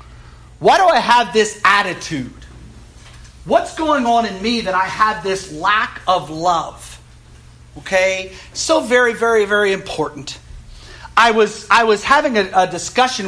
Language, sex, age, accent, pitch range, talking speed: English, male, 40-59, American, 180-235 Hz, 140 wpm